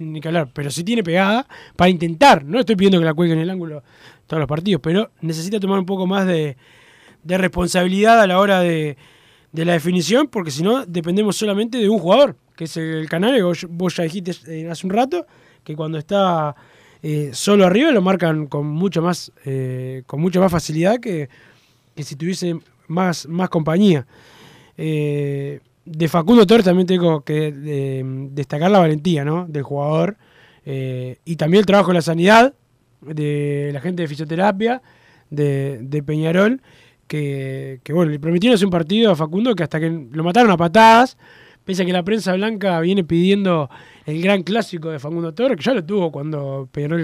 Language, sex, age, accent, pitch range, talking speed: Spanish, male, 20-39, Argentinian, 150-195 Hz, 185 wpm